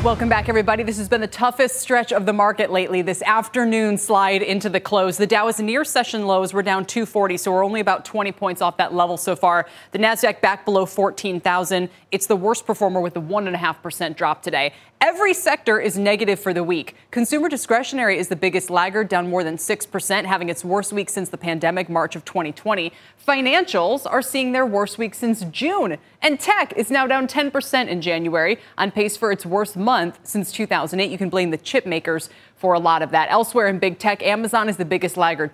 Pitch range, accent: 175-230 Hz, American